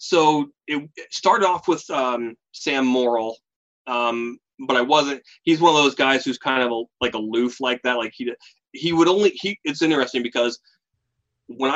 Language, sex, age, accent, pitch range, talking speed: English, male, 30-49, American, 115-140 Hz, 180 wpm